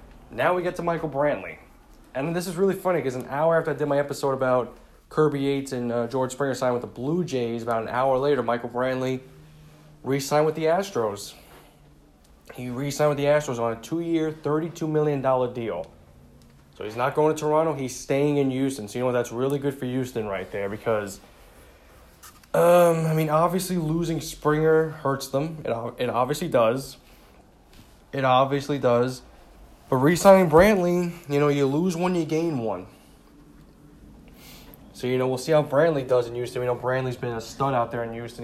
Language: English